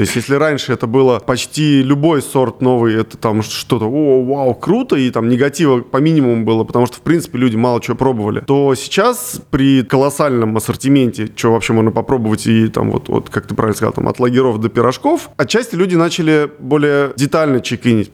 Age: 20-39